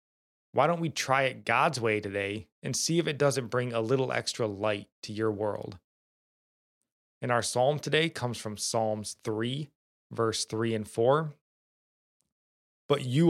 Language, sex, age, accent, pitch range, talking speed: English, male, 20-39, American, 105-130 Hz, 160 wpm